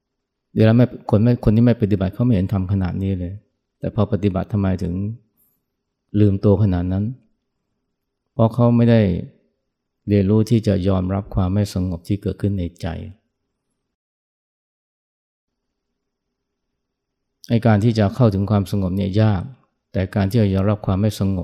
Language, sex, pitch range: Thai, male, 95-110 Hz